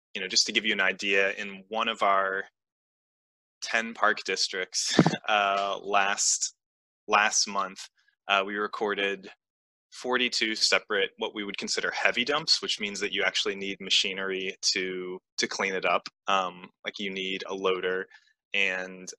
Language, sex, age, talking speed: English, male, 20-39, 150 wpm